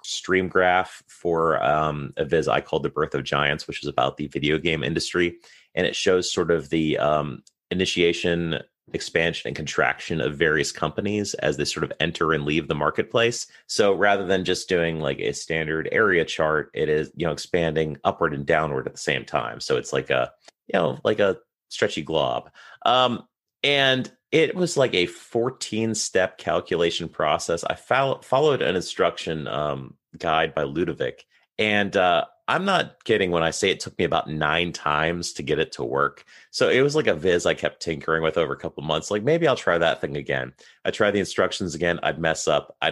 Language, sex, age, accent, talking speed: English, male, 30-49, American, 200 wpm